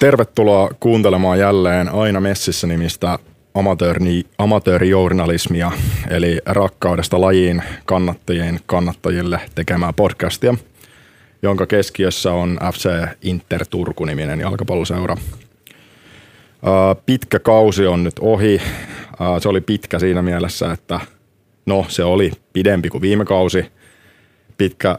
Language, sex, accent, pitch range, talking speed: Finnish, male, native, 90-100 Hz, 95 wpm